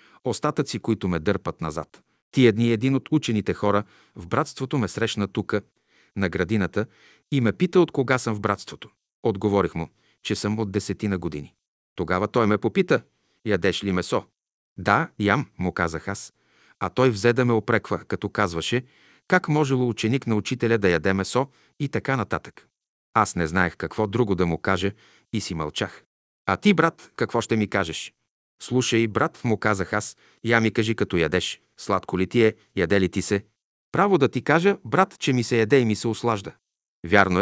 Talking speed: 185 wpm